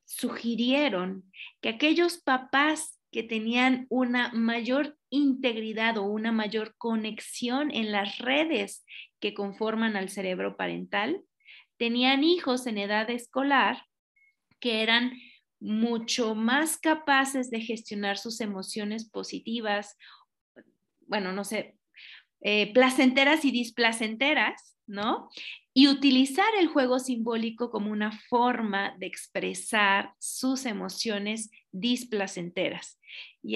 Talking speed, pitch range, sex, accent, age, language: 105 wpm, 210-255 Hz, female, Mexican, 30-49, Spanish